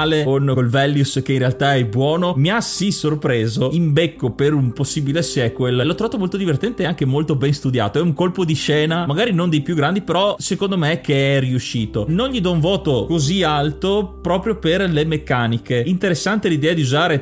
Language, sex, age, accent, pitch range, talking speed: Italian, male, 30-49, native, 130-160 Hz, 205 wpm